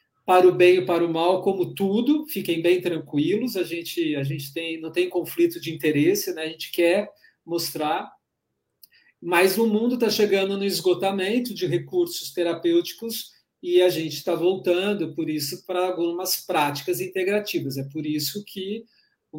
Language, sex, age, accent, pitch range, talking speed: Portuguese, male, 40-59, Brazilian, 160-205 Hz, 160 wpm